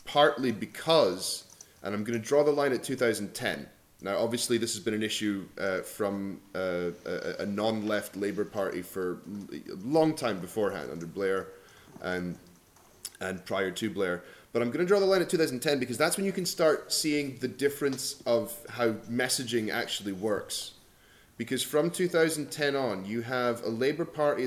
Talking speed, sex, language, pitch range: 170 wpm, male, English, 105-125 Hz